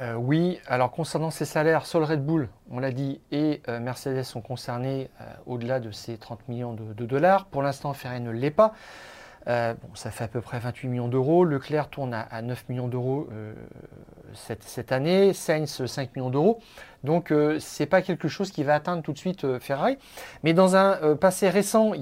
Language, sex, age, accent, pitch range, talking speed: French, male, 40-59, French, 125-180 Hz, 215 wpm